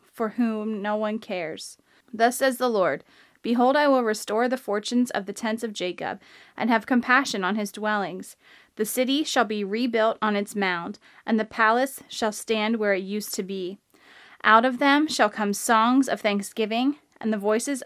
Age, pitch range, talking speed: 20-39, 210-245 Hz, 185 wpm